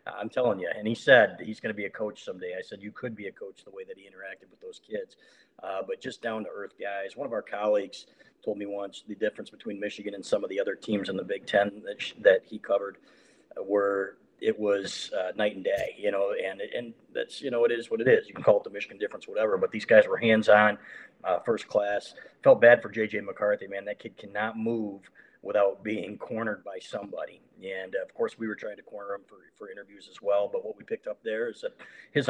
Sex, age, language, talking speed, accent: male, 40-59, English, 250 wpm, American